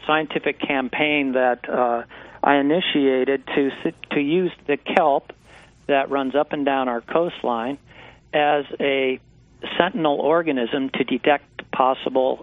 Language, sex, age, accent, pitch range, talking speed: English, male, 50-69, American, 125-145 Hz, 120 wpm